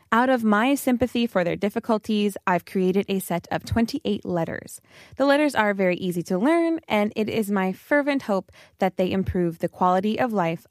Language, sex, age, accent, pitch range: Korean, female, 20-39, American, 175-235 Hz